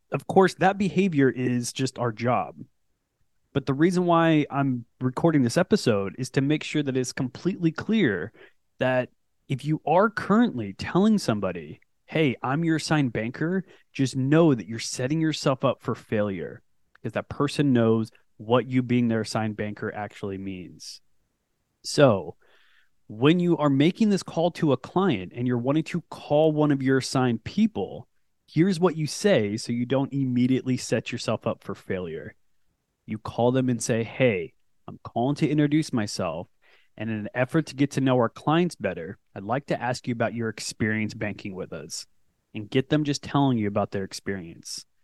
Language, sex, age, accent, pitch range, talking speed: English, male, 20-39, American, 120-160 Hz, 175 wpm